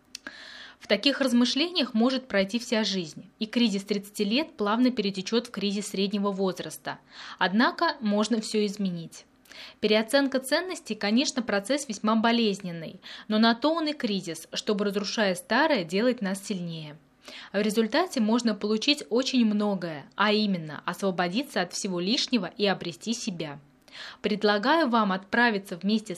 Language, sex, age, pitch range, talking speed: Russian, female, 20-39, 190-245 Hz, 135 wpm